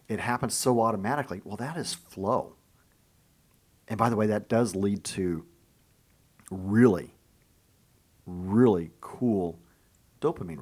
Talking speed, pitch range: 115 wpm, 95-115 Hz